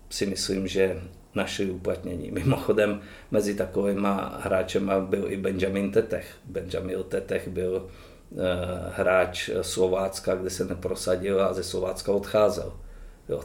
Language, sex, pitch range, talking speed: Czech, male, 90-100 Hz, 120 wpm